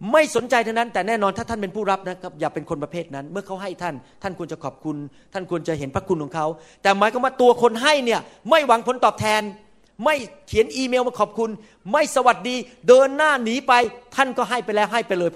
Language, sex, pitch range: Thai, male, 185-255 Hz